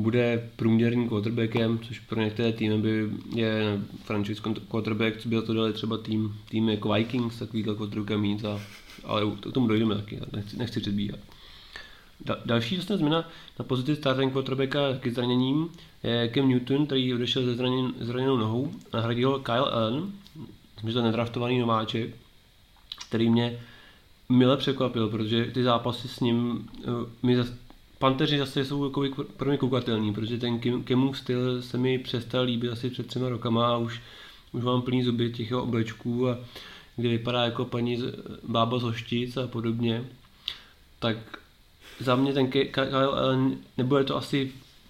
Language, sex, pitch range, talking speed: Czech, male, 115-130 Hz, 155 wpm